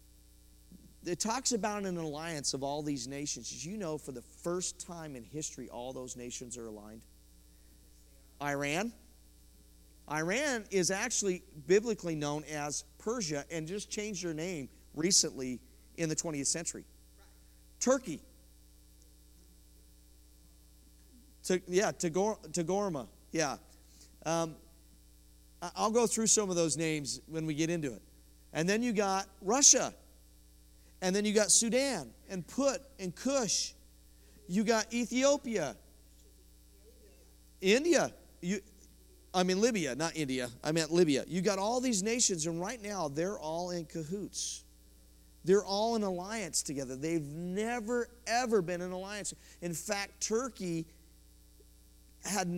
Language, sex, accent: English, male, American